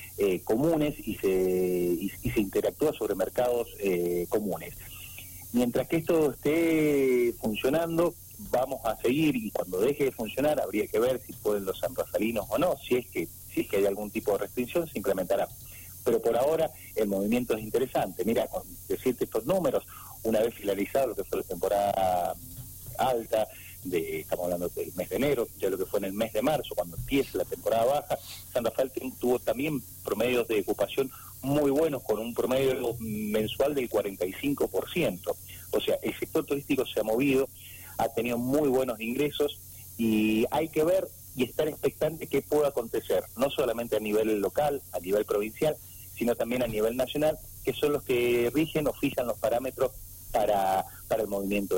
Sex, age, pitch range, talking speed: male, 40-59, 105-150 Hz, 175 wpm